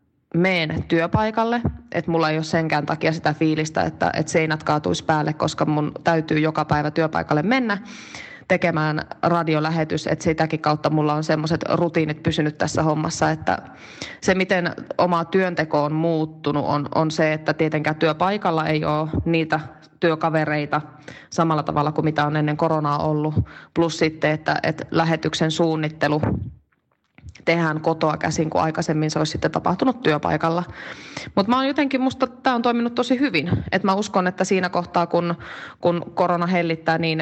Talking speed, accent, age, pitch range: 150 wpm, native, 20-39, 155-175 Hz